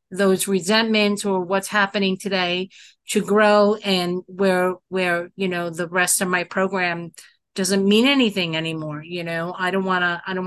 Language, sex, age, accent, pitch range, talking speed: English, female, 50-69, American, 185-215 Hz, 170 wpm